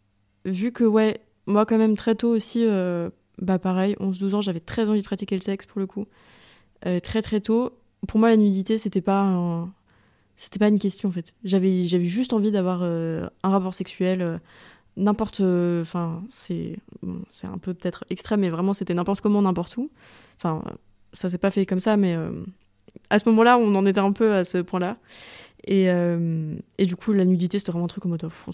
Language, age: French, 20-39